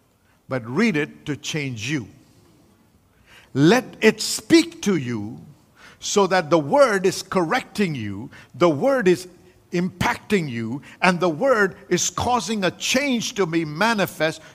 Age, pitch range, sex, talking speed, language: 50-69, 160-225 Hz, male, 135 wpm, English